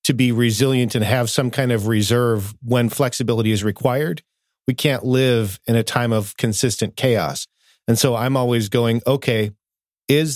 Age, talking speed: 40-59, 170 wpm